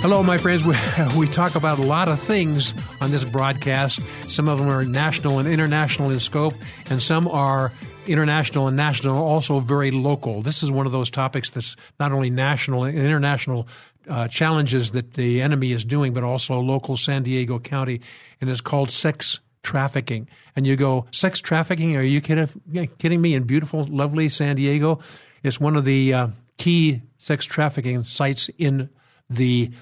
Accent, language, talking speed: American, English, 185 wpm